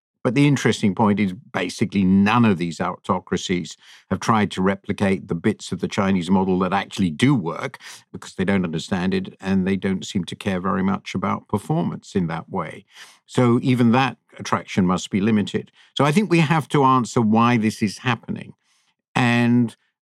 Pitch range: 105-140 Hz